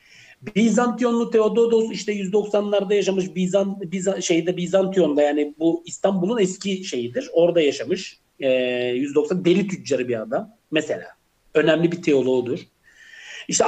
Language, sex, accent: Turkish, male, native